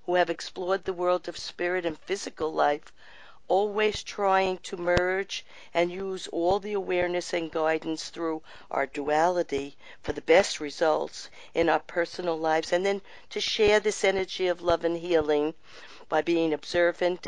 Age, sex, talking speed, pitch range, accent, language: 50-69, female, 155 wpm, 165-195 Hz, American, English